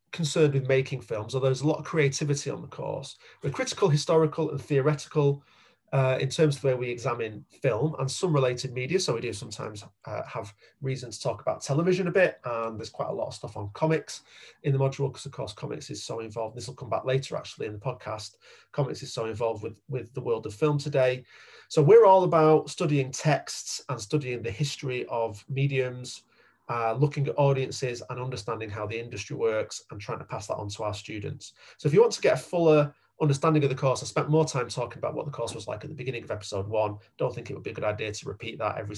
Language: English